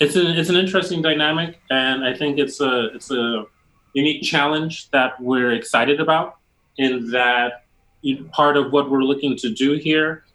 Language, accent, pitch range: English, American, 115-140 Hz